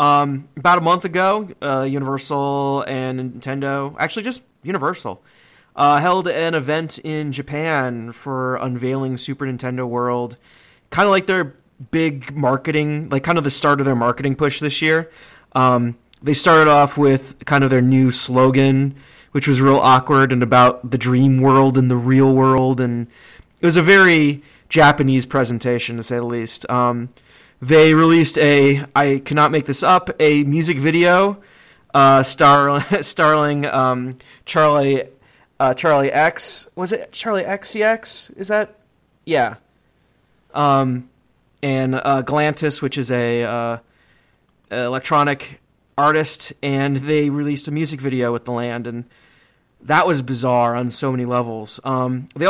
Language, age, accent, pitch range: English, 20-39, American, 130-155 Hz